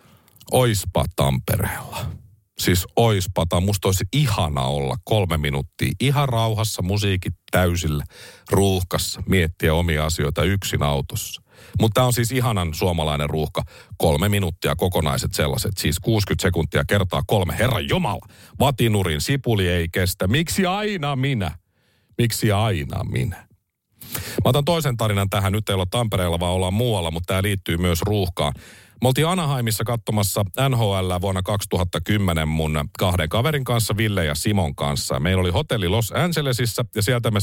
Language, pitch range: Finnish, 90-125 Hz